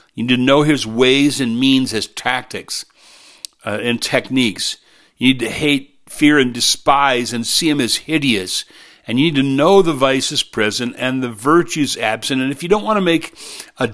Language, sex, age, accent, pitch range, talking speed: English, male, 50-69, American, 125-165 Hz, 195 wpm